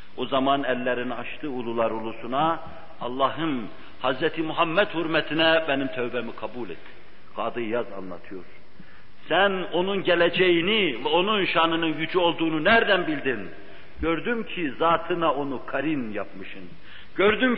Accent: native